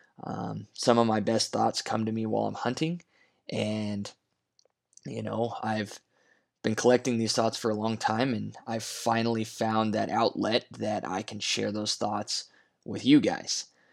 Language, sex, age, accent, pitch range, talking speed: English, male, 20-39, American, 110-125 Hz, 170 wpm